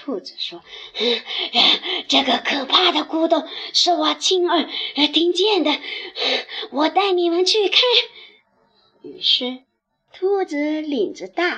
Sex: male